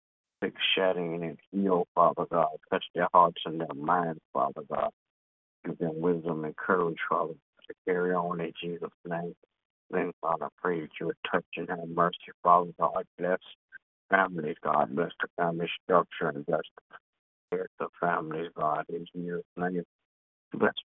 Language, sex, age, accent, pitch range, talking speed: English, male, 50-69, American, 85-90 Hz, 155 wpm